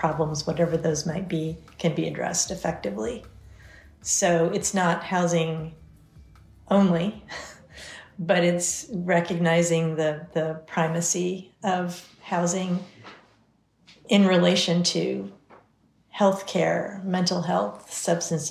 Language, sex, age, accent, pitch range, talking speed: English, female, 40-59, American, 165-180 Hz, 95 wpm